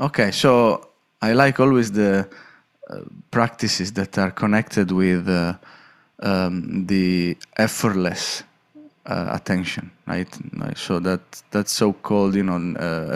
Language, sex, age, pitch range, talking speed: English, male, 20-39, 95-120 Hz, 120 wpm